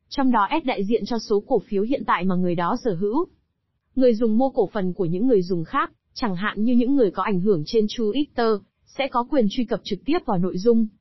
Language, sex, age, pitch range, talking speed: Vietnamese, female, 20-39, 195-250 Hz, 250 wpm